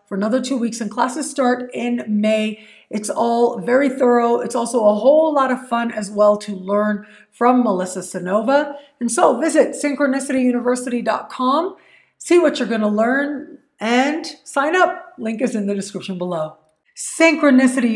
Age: 50-69